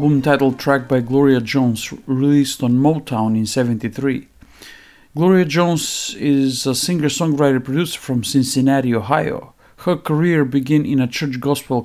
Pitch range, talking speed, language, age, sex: 135-170 Hz, 125 wpm, English, 50-69, male